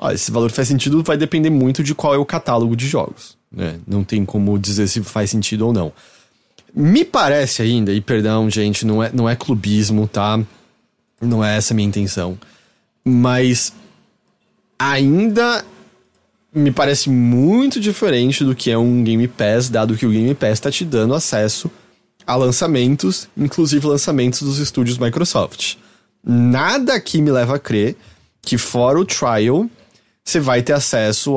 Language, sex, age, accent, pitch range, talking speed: English, male, 20-39, Brazilian, 105-140 Hz, 160 wpm